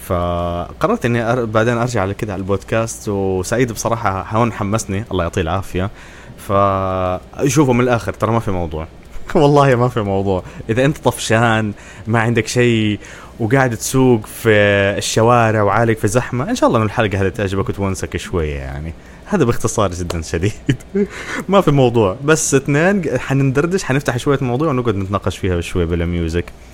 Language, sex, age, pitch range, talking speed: Arabic, male, 20-39, 95-125 Hz, 155 wpm